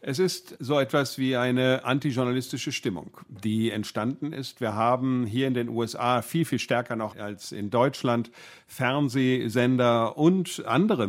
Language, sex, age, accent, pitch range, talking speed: German, male, 50-69, German, 110-135 Hz, 145 wpm